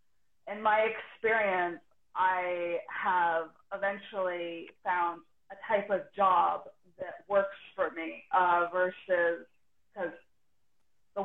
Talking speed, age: 100 wpm, 20-39